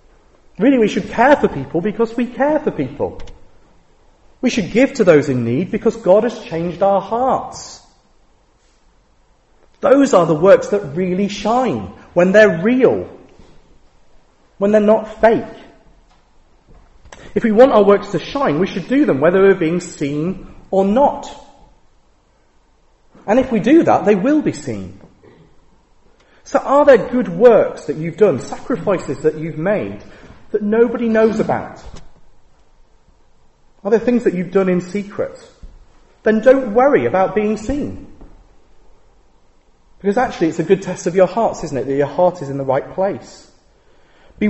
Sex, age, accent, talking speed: male, 40-59, British, 155 wpm